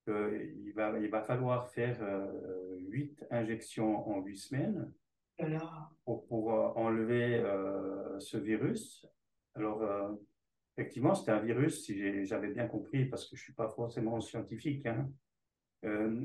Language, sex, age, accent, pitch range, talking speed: French, male, 50-69, French, 110-140 Hz, 145 wpm